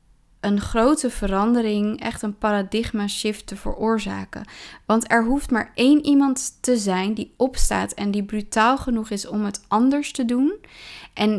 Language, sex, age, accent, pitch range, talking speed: Dutch, female, 20-39, Dutch, 200-240 Hz, 155 wpm